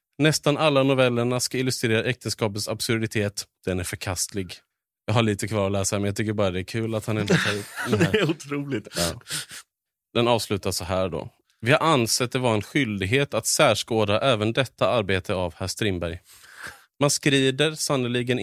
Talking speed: 175 wpm